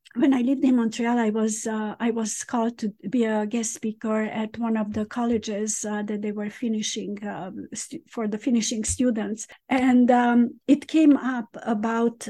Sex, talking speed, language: female, 185 wpm, English